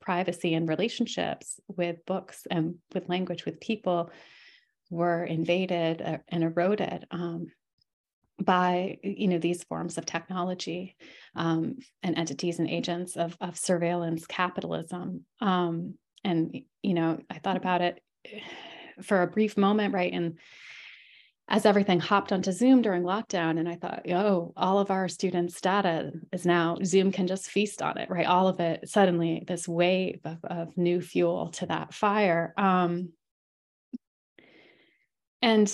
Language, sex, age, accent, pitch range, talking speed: English, female, 30-49, American, 170-200 Hz, 145 wpm